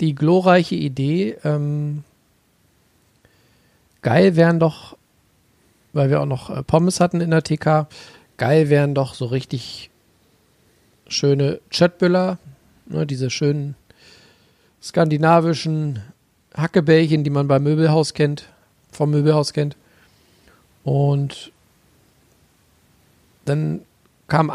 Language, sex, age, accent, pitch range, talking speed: German, male, 40-59, German, 140-160 Hz, 95 wpm